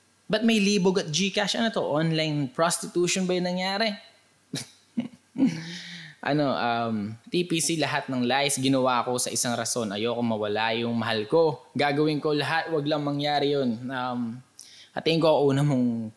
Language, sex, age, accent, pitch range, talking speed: Filipino, male, 20-39, native, 125-160 Hz, 150 wpm